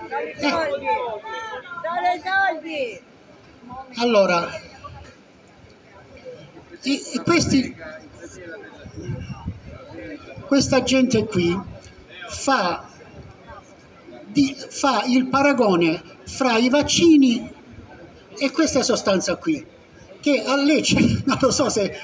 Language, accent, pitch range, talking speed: Italian, native, 205-290 Hz, 70 wpm